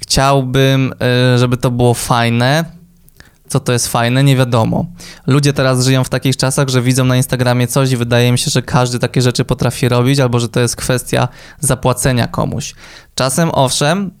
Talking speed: 175 wpm